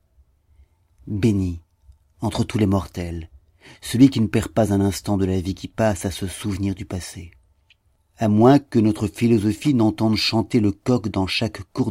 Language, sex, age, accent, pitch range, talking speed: French, male, 40-59, French, 95-115 Hz, 170 wpm